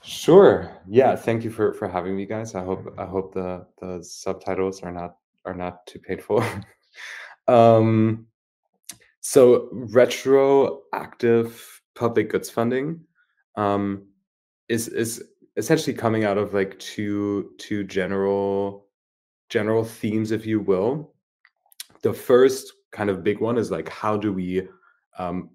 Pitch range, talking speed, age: 95-110 Hz, 130 wpm, 20-39